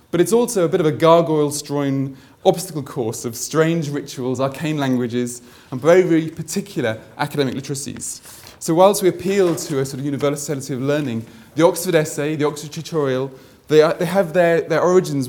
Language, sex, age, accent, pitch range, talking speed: English, male, 30-49, British, 125-160 Hz, 175 wpm